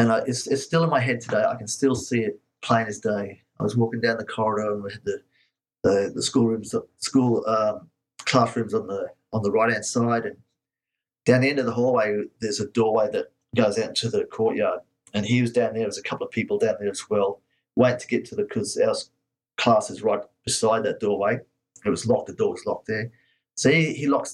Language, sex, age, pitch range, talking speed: English, male, 30-49, 110-135 Hz, 235 wpm